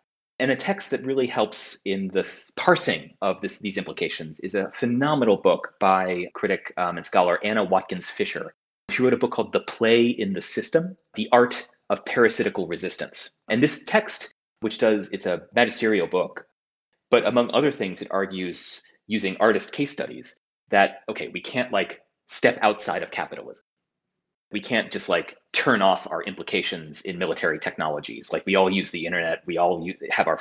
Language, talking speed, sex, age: English, 175 wpm, male, 30-49